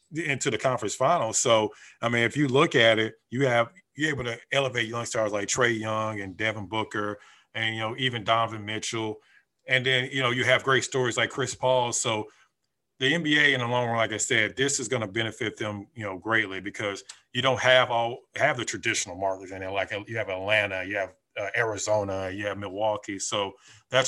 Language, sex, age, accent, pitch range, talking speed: English, male, 30-49, American, 105-130 Hz, 215 wpm